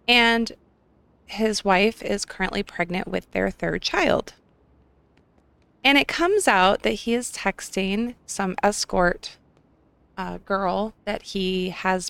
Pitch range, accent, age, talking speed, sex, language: 180-210 Hz, American, 30-49, 125 wpm, female, English